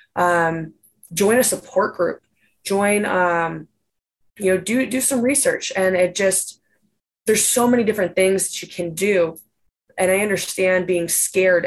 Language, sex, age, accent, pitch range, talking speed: English, female, 20-39, American, 180-215 Hz, 155 wpm